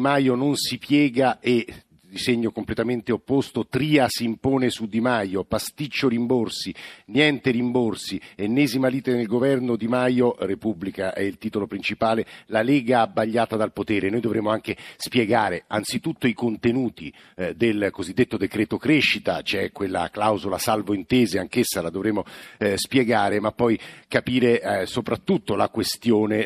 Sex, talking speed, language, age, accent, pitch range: male, 140 wpm, Italian, 50-69, native, 105-125 Hz